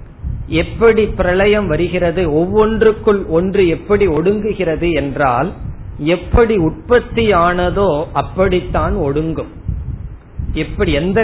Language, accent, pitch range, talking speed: Tamil, native, 140-195 Hz, 80 wpm